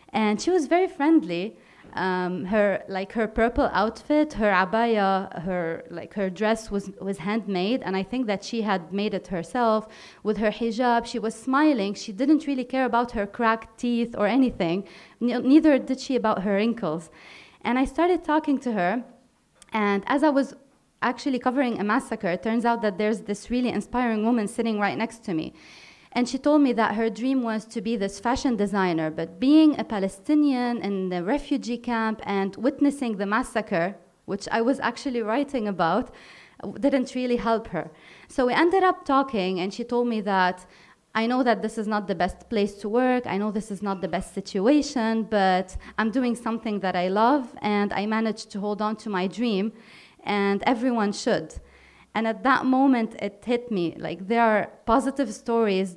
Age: 20-39